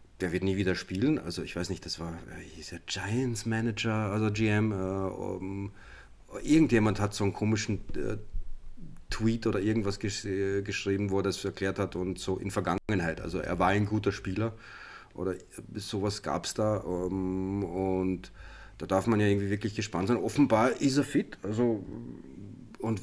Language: German